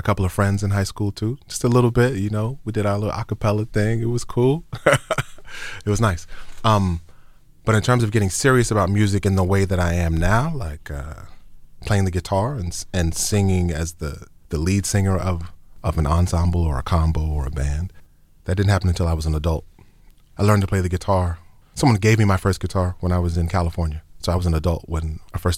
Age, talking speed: 30-49, 230 wpm